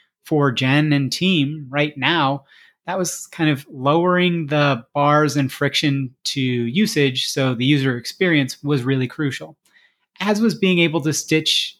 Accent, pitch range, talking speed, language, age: American, 130-165 Hz, 155 wpm, English, 30-49